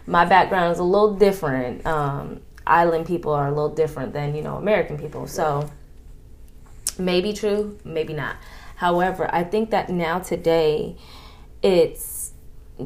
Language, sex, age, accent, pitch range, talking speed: English, female, 20-39, American, 150-190 Hz, 140 wpm